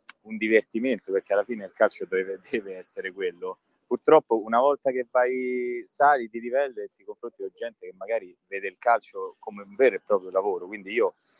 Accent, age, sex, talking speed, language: native, 20-39, male, 195 wpm, Italian